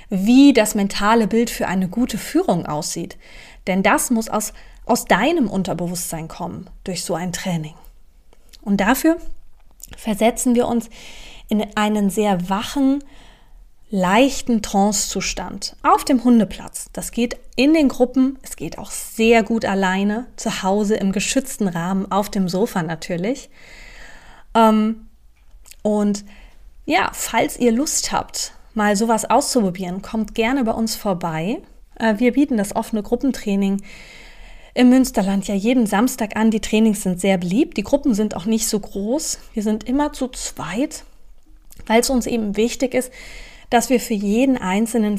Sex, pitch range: female, 195-245 Hz